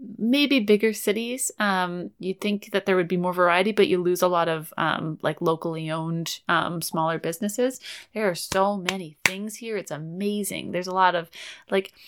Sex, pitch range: female, 165-210 Hz